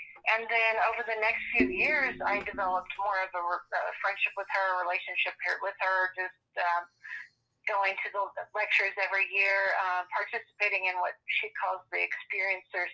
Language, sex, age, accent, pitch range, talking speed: English, female, 40-59, American, 185-210 Hz, 165 wpm